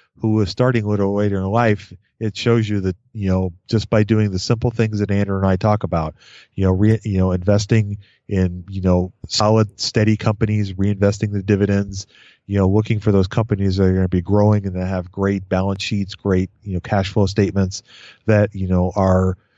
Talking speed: 210 wpm